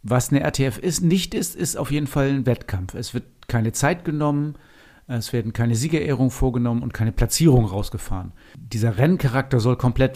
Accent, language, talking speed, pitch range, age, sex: German, German, 175 wpm, 115-140 Hz, 50-69, male